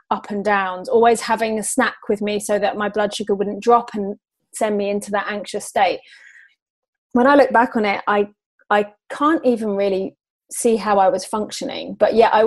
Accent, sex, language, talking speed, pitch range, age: British, female, English, 200 wpm, 190-250 Hz, 30-49